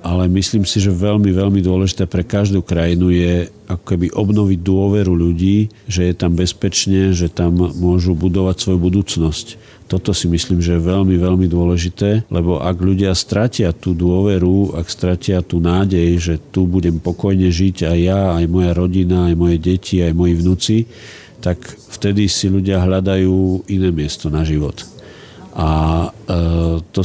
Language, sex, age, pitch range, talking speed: Slovak, male, 50-69, 85-95 Hz, 160 wpm